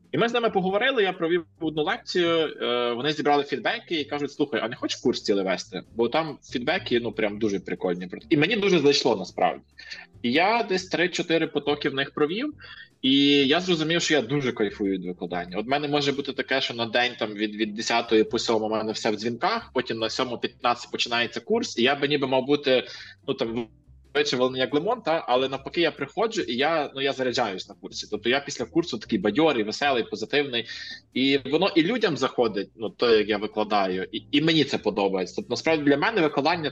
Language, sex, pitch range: Russian, male, 115-150 Hz